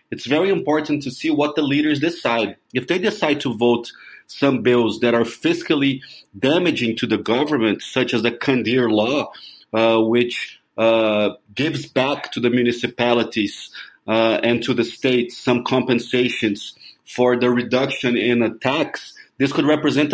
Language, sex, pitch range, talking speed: English, male, 125-150 Hz, 155 wpm